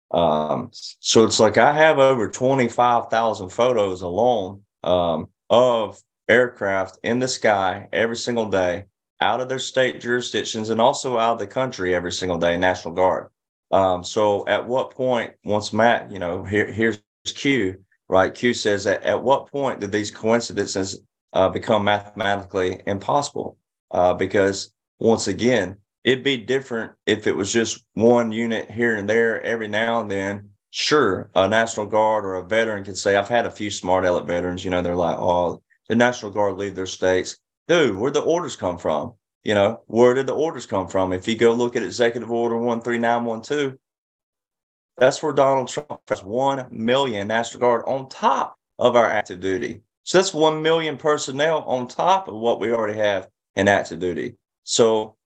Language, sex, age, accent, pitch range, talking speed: English, male, 30-49, American, 95-120 Hz, 175 wpm